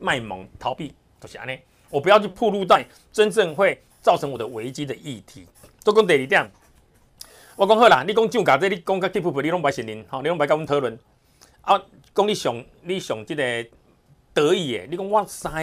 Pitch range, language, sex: 130-200 Hz, Chinese, male